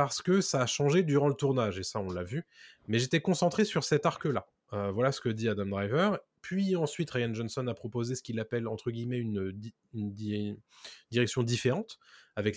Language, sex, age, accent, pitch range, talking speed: French, male, 20-39, French, 105-145 Hz, 215 wpm